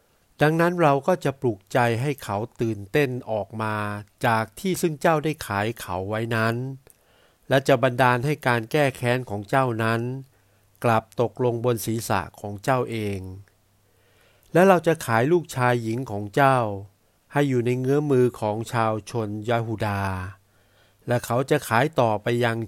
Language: Thai